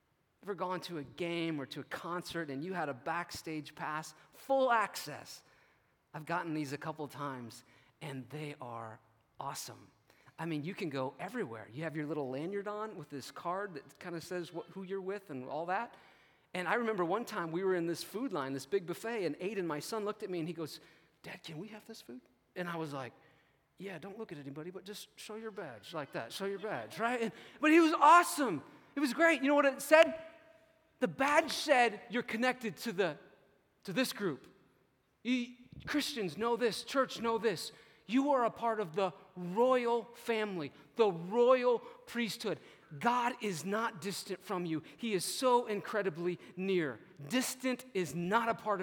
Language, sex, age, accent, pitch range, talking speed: English, male, 30-49, American, 145-225 Hz, 195 wpm